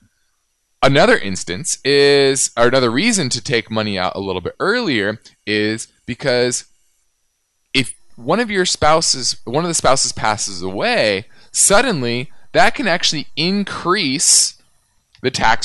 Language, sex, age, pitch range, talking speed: English, male, 20-39, 115-165 Hz, 130 wpm